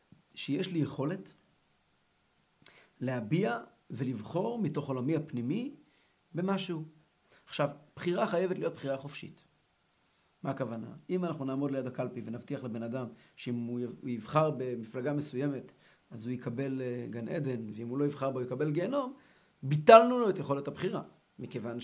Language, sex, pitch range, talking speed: Hebrew, male, 130-180 Hz, 135 wpm